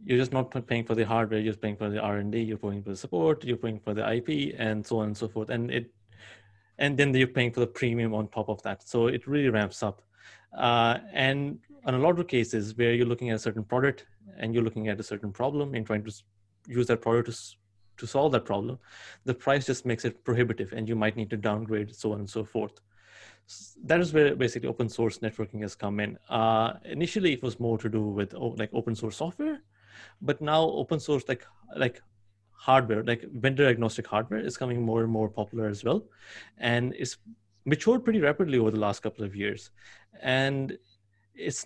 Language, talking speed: English, 220 wpm